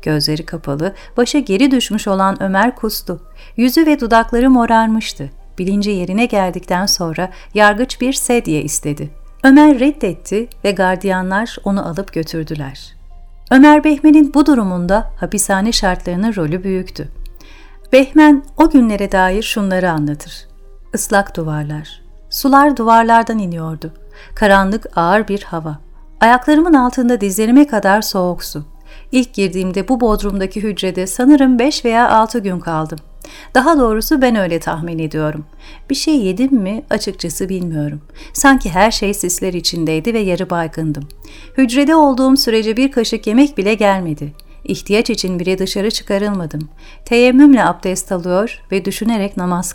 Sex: female